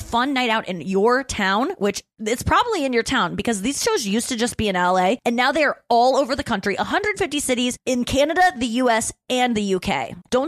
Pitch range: 175-235 Hz